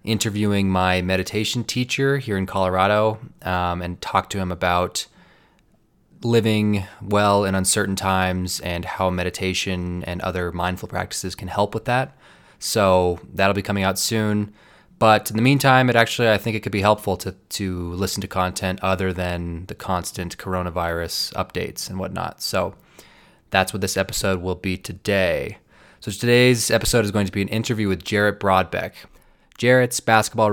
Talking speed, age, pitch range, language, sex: 160 wpm, 20-39, 90-110 Hz, English, male